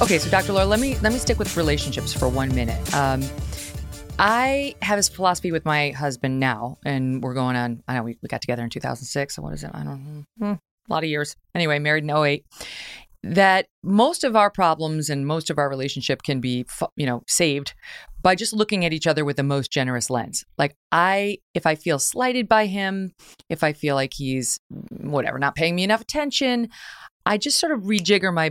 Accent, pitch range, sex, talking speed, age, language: American, 140-190 Hz, female, 215 wpm, 30-49, English